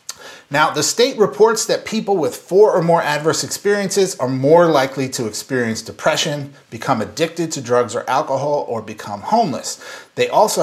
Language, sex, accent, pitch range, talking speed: English, male, American, 130-190 Hz, 165 wpm